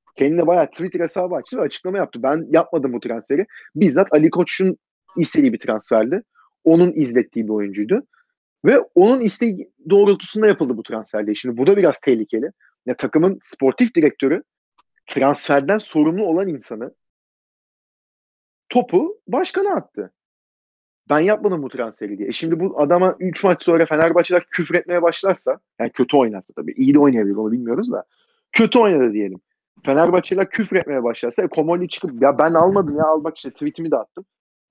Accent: native